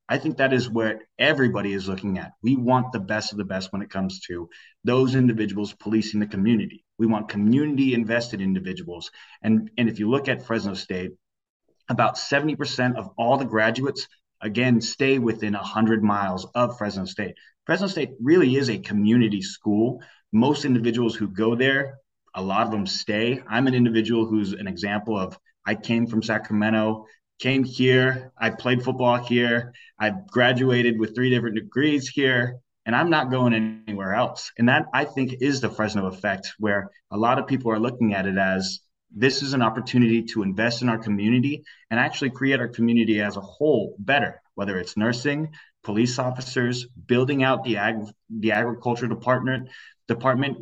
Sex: male